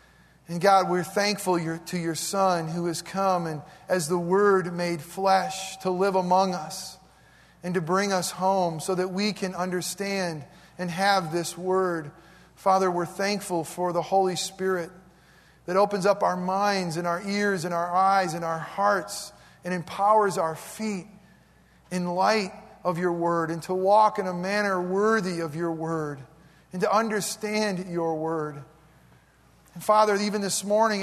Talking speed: 160 wpm